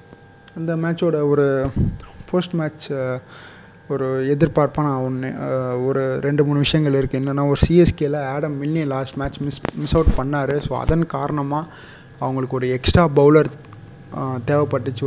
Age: 20-39